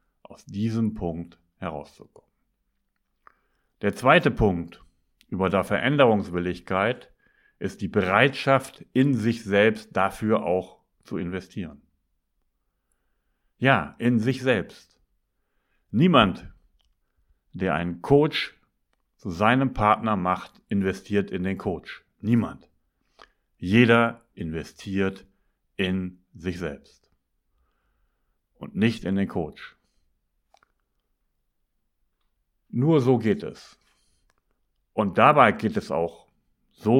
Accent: German